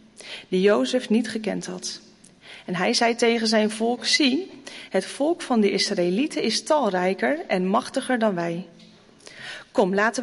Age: 40-59